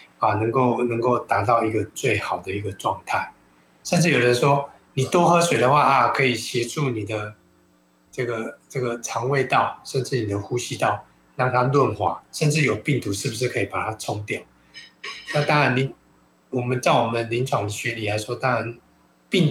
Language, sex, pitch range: Chinese, male, 110-140 Hz